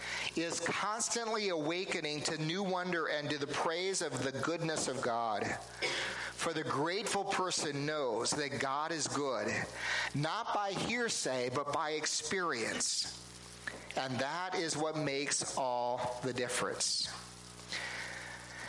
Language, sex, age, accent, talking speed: English, male, 50-69, American, 120 wpm